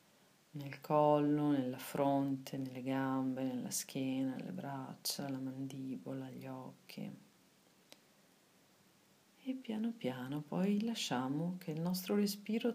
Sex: female